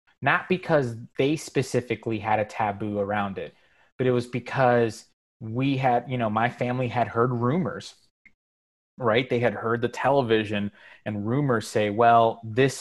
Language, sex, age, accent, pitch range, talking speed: English, male, 20-39, American, 105-125 Hz, 155 wpm